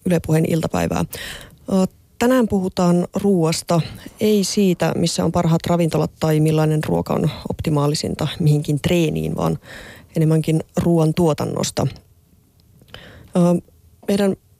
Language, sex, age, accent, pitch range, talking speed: Finnish, female, 30-49, native, 165-190 Hz, 100 wpm